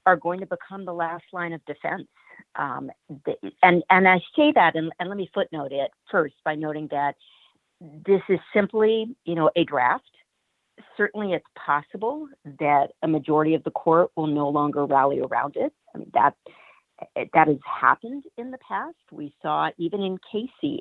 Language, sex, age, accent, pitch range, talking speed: English, female, 50-69, American, 155-200 Hz, 175 wpm